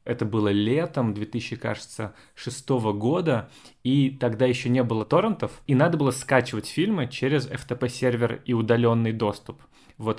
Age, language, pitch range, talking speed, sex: 20-39, Russian, 110-140 Hz, 130 wpm, male